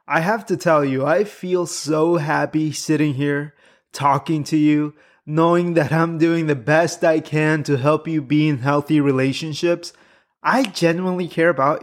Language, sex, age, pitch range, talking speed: English, male, 20-39, 150-180 Hz, 170 wpm